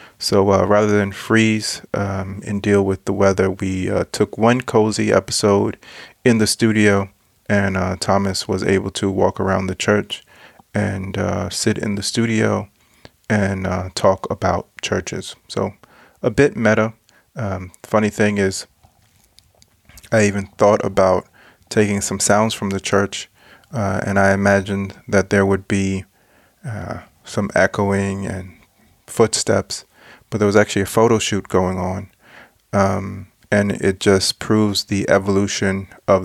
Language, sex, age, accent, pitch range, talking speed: Danish, male, 30-49, American, 95-105 Hz, 145 wpm